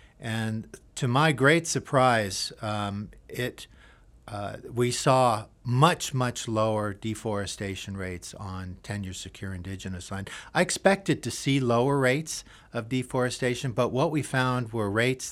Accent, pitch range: American, 105-130 Hz